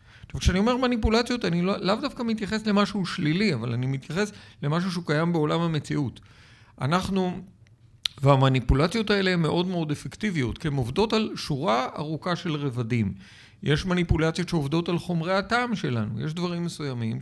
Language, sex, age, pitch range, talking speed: Hebrew, male, 50-69, 125-185 Hz, 145 wpm